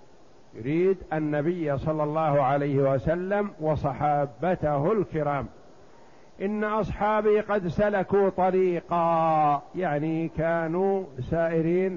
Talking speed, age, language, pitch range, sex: 80 wpm, 50-69, Arabic, 155-185 Hz, male